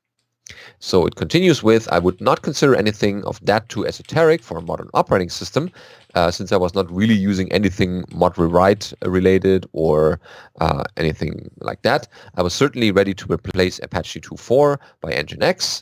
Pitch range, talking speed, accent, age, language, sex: 90-130 Hz, 165 wpm, German, 30-49, English, male